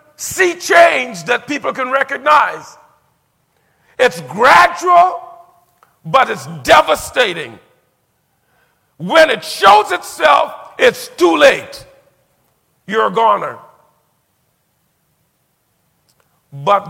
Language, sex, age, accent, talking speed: English, male, 50-69, American, 80 wpm